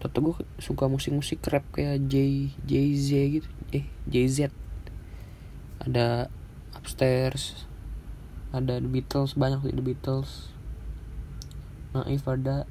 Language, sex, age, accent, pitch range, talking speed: Indonesian, male, 20-39, native, 85-135 Hz, 100 wpm